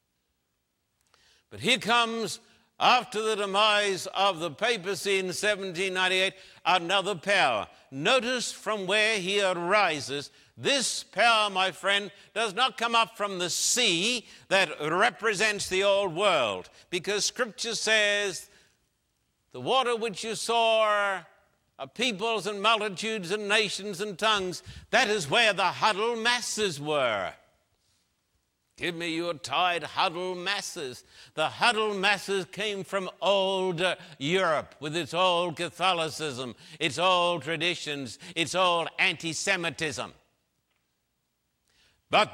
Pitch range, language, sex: 170-215 Hz, English, male